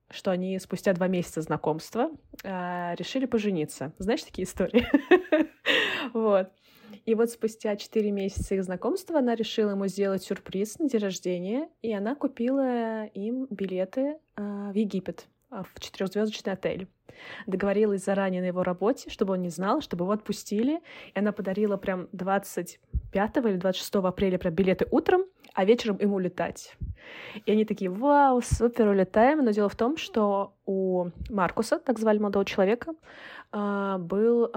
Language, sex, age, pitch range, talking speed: Russian, female, 20-39, 190-230 Hz, 140 wpm